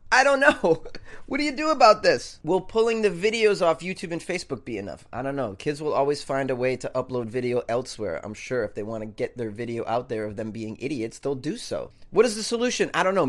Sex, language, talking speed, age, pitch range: male, English, 255 wpm, 30-49, 155-245 Hz